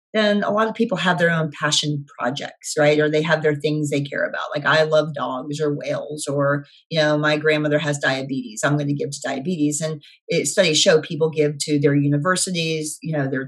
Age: 40-59